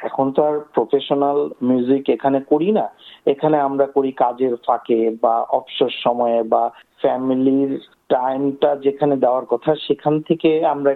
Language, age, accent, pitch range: Bengali, 50-69, native, 125-145 Hz